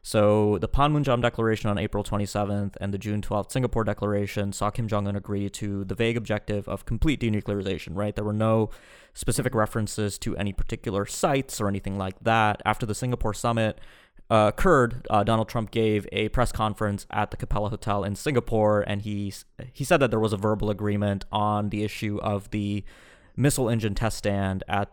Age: 20-39